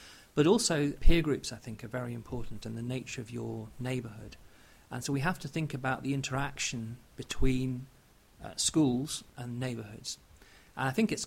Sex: male